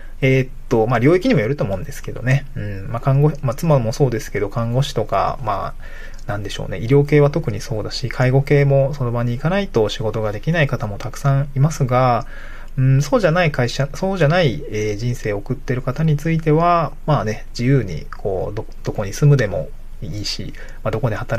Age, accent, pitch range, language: 20-39, native, 115-145 Hz, Japanese